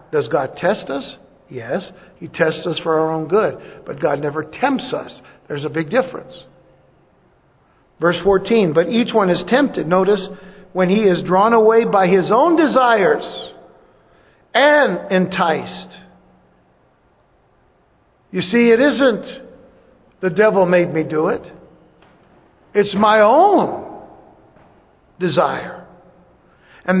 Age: 60-79